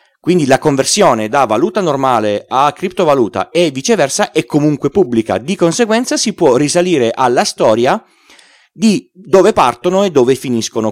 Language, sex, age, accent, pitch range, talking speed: Italian, male, 30-49, native, 120-180 Hz, 145 wpm